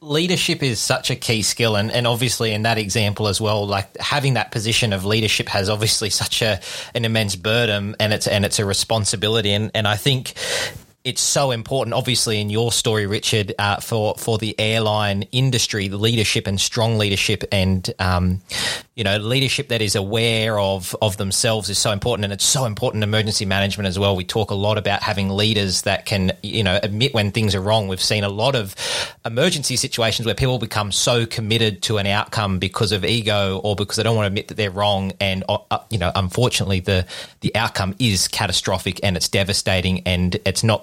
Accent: Australian